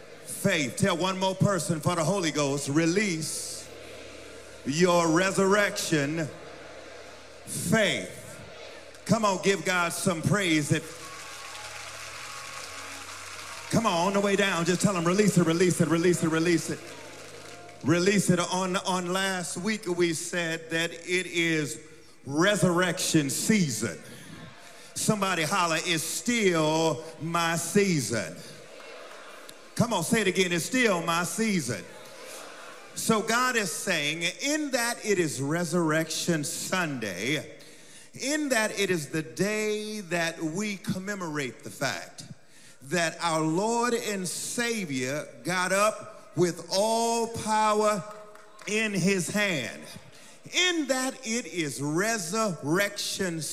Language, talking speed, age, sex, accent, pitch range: English, 115 wpm, 40-59, male, American, 160-210 Hz